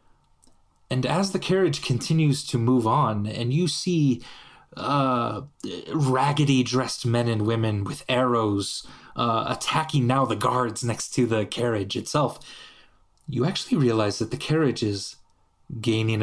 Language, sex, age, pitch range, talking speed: English, male, 30-49, 105-140 Hz, 135 wpm